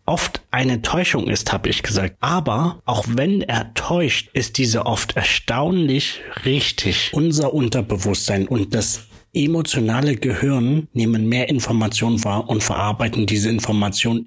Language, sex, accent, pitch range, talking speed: English, male, German, 105-135 Hz, 130 wpm